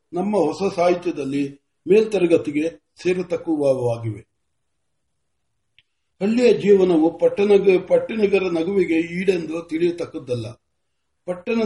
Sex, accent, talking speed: male, native, 65 wpm